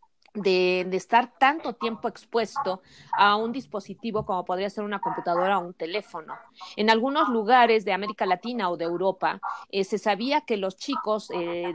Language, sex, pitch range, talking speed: Spanish, female, 190-235 Hz, 170 wpm